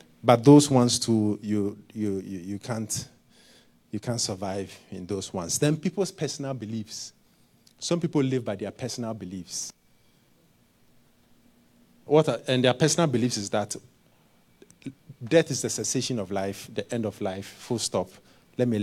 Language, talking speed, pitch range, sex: English, 155 wpm, 105-140 Hz, male